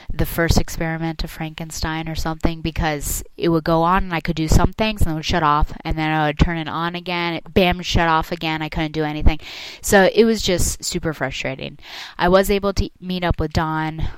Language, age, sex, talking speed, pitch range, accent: English, 20-39, female, 230 wpm, 140-170 Hz, American